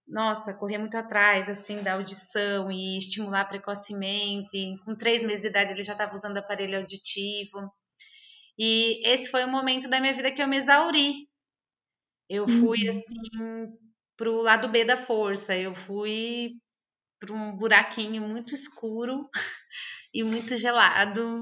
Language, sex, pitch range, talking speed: Portuguese, female, 190-230 Hz, 145 wpm